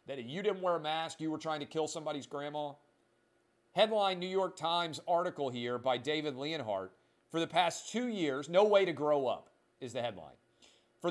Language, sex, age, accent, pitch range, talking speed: English, male, 40-59, American, 130-175 Hz, 190 wpm